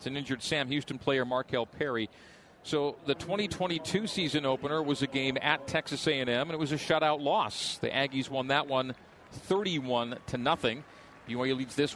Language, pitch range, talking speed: English, 130-160 Hz, 175 wpm